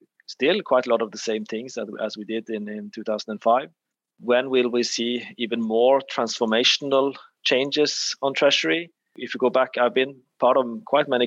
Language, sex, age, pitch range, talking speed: English, male, 30-49, 115-130 Hz, 180 wpm